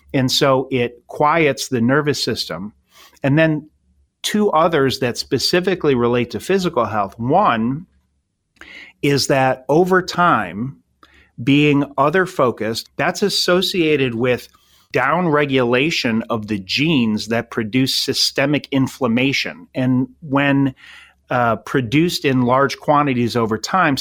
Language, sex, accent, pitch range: English, male, American, 120-145 Hz